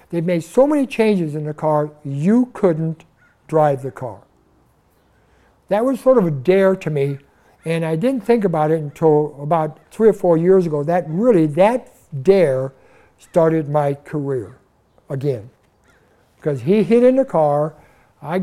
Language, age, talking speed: English, 60-79, 160 wpm